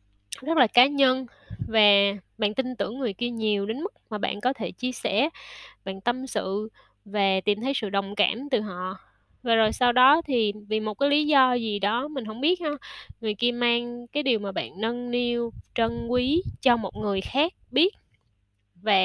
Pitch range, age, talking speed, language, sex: 200-255 Hz, 10-29, 200 wpm, Vietnamese, female